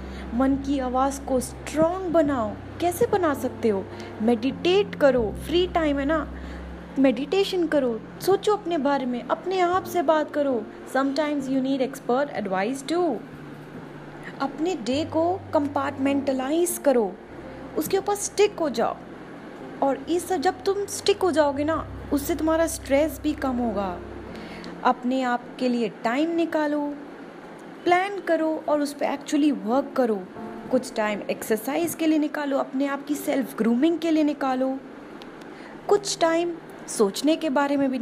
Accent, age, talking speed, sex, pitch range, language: native, 20-39, 145 wpm, female, 255-330 Hz, Hindi